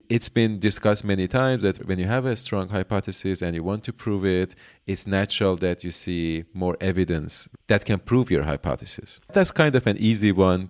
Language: English